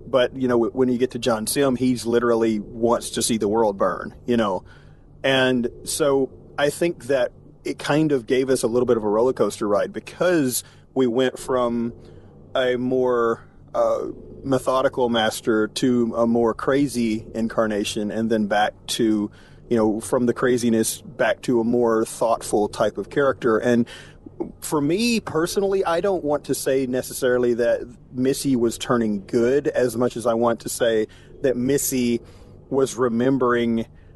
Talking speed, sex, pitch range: 165 wpm, male, 115-130 Hz